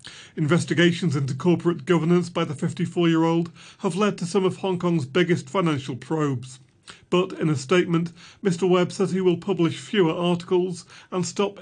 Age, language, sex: 40-59, English, male